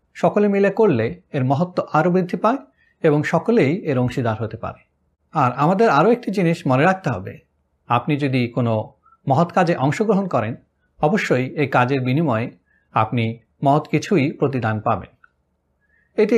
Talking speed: 140 wpm